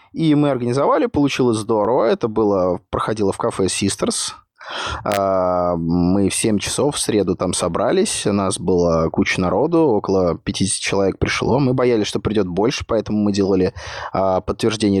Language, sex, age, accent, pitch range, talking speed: Russian, male, 20-39, native, 95-115 Hz, 150 wpm